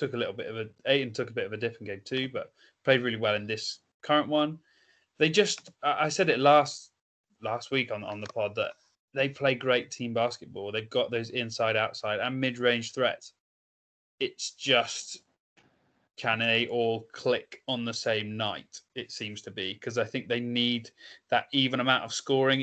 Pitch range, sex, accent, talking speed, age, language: 110-135 Hz, male, British, 200 wpm, 20-39, English